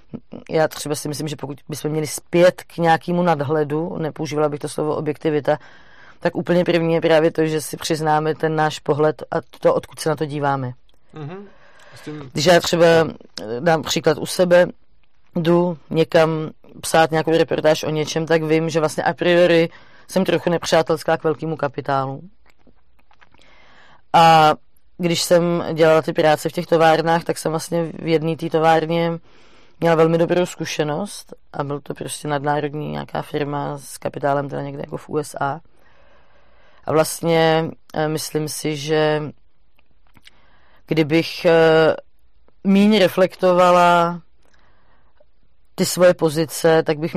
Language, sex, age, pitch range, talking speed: Czech, female, 20-39, 150-170 Hz, 140 wpm